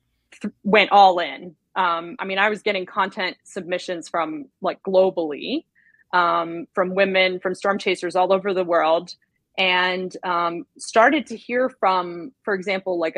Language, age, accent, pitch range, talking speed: English, 20-39, American, 180-215 Hz, 155 wpm